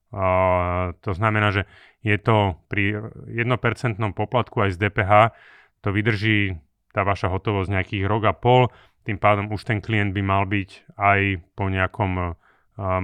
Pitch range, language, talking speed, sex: 95-110 Hz, Slovak, 150 wpm, male